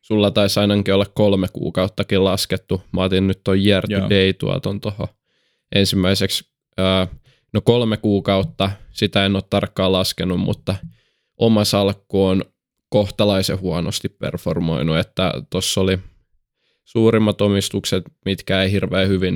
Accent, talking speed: native, 120 wpm